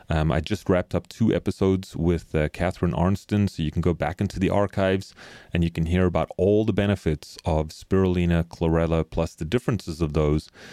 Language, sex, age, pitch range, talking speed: English, male, 30-49, 80-95 Hz, 195 wpm